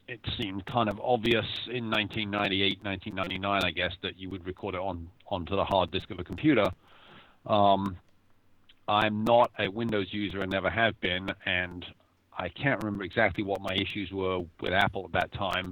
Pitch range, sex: 95-115 Hz, male